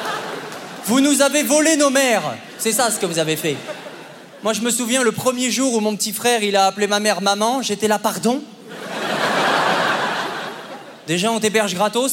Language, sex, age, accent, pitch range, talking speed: French, male, 20-39, French, 185-250 Hz, 185 wpm